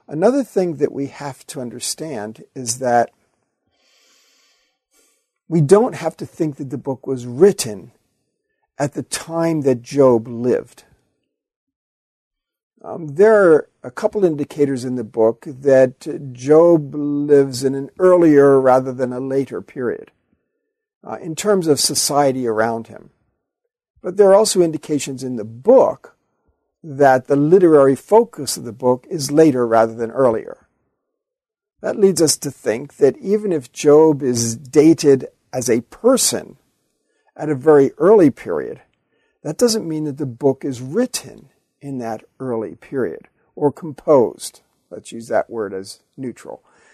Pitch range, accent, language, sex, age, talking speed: 130-205 Hz, American, English, male, 50-69, 140 wpm